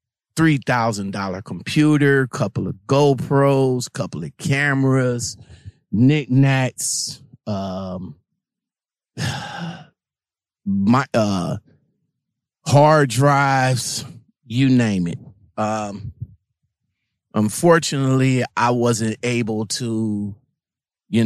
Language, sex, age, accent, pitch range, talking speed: English, male, 30-49, American, 115-140 Hz, 80 wpm